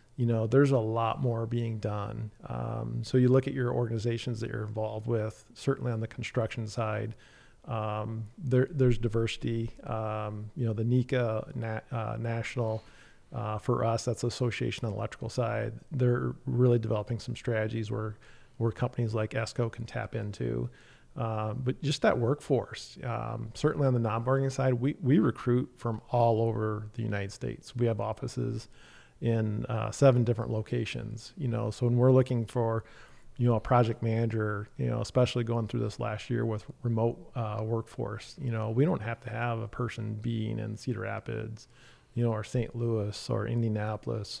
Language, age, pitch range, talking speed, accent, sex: English, 40-59, 110-125 Hz, 175 wpm, American, male